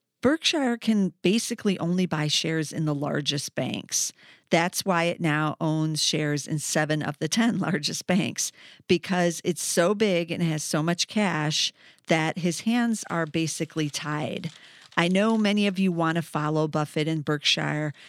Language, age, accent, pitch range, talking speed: English, 50-69, American, 155-185 Hz, 165 wpm